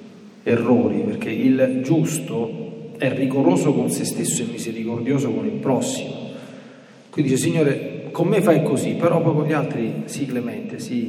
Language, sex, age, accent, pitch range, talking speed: Italian, male, 40-59, native, 135-225 Hz, 155 wpm